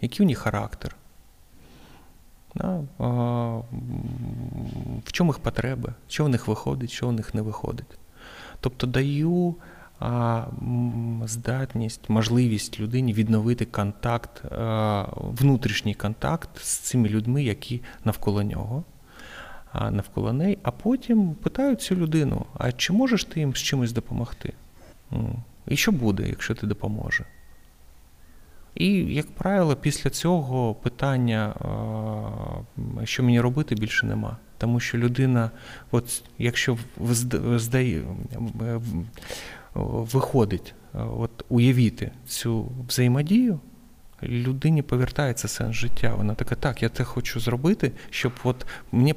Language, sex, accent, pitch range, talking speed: Ukrainian, male, native, 110-135 Hz, 105 wpm